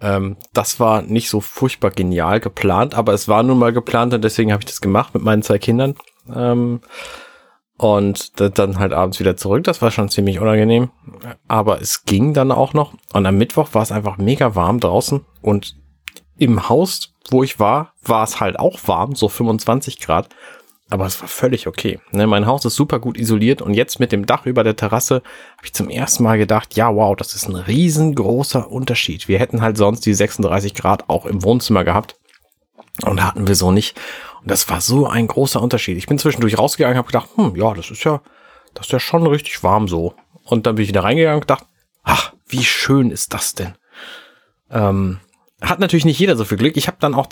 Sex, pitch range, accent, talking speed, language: male, 100-130 Hz, German, 210 wpm, German